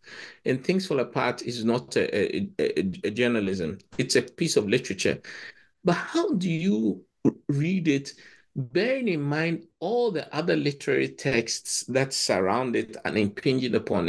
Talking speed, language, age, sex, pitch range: 160 wpm, English, 50-69, male, 120-185 Hz